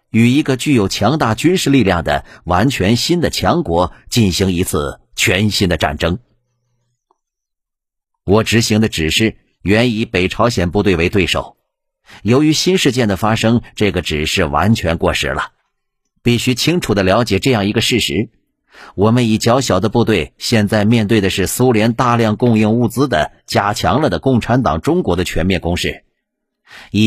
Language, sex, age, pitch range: Chinese, male, 50-69, 95-120 Hz